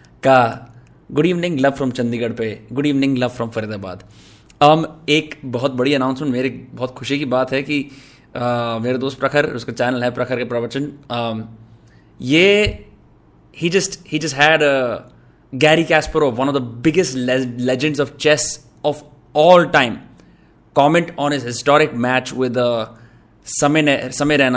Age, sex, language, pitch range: 20-39, male, Hindi, 125-150 Hz